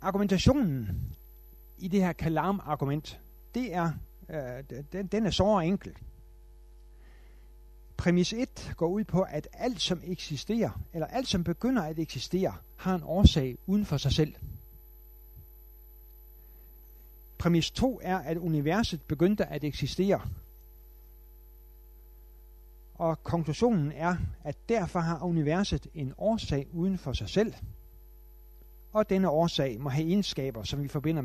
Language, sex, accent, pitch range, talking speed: Danish, male, native, 130-185 Hz, 120 wpm